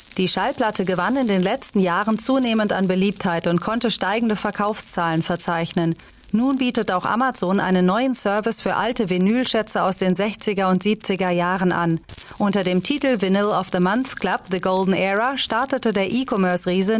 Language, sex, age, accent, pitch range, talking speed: German, female, 30-49, German, 185-225 Hz, 165 wpm